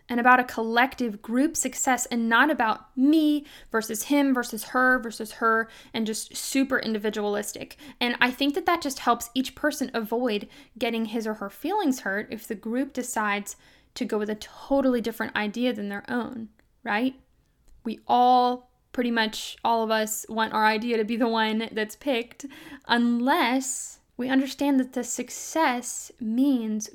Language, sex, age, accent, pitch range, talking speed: English, female, 10-29, American, 220-265 Hz, 165 wpm